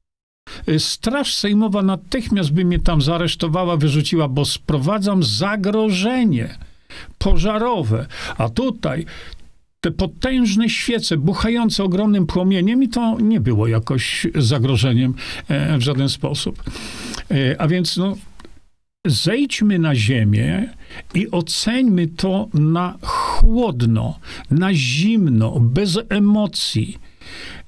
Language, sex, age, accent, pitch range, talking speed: Polish, male, 50-69, native, 130-190 Hz, 95 wpm